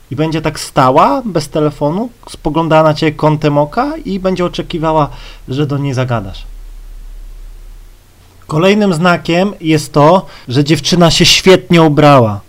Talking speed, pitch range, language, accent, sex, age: 130 wpm, 130-165 Hz, Polish, native, male, 30-49